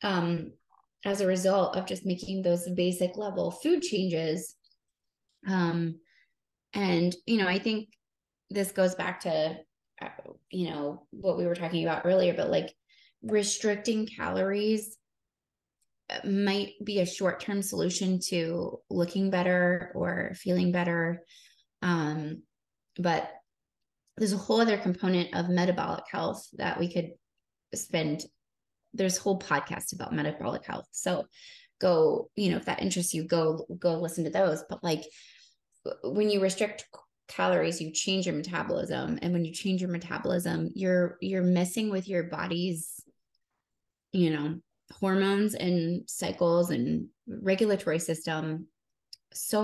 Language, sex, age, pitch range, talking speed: English, female, 20-39, 170-200 Hz, 135 wpm